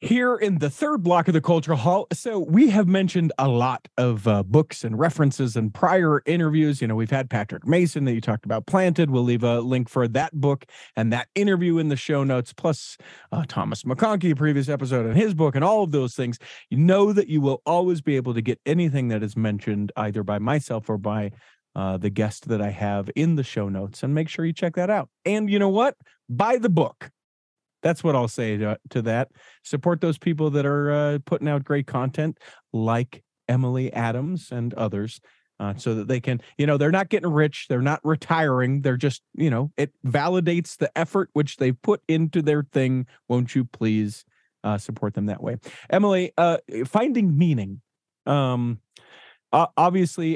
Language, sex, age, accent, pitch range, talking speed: English, male, 40-59, American, 120-165 Hz, 205 wpm